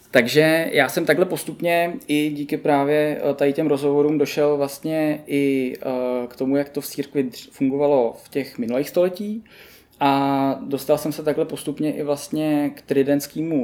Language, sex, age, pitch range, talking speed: Czech, male, 20-39, 135-150 Hz, 155 wpm